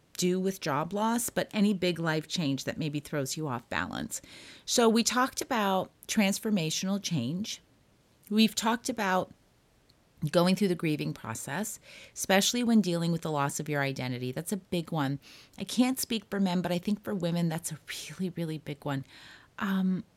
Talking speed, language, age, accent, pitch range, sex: 175 wpm, English, 30-49, American, 160-215 Hz, female